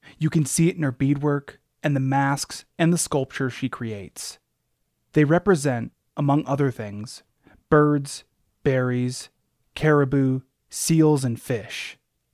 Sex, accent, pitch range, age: male, American, 125-155 Hz, 30-49